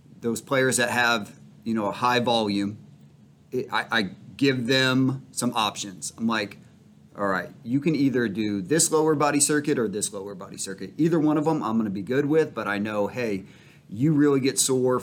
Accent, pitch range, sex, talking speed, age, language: American, 105-130 Hz, male, 200 wpm, 30-49, English